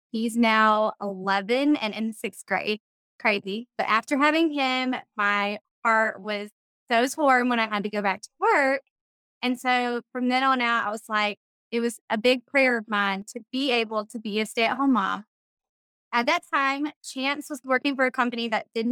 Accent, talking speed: American, 190 wpm